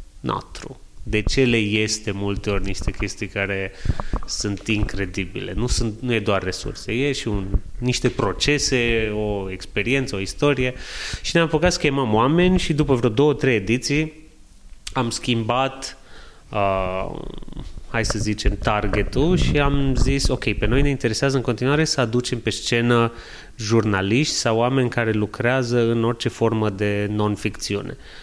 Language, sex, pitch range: Romanian, male, 105-135 Hz